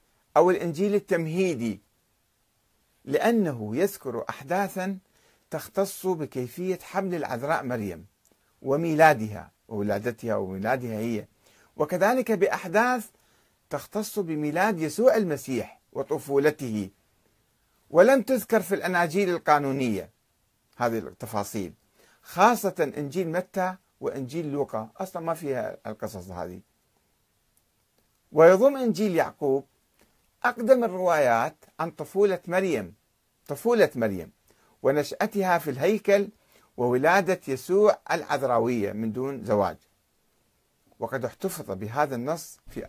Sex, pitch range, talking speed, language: male, 115-185 Hz, 90 wpm, Arabic